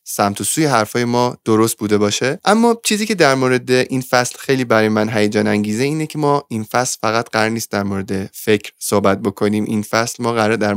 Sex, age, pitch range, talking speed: male, 20-39, 105-130 Hz, 210 wpm